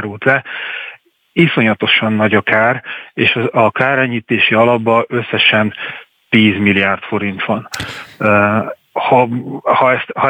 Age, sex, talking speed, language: 40-59, male, 105 wpm, Hungarian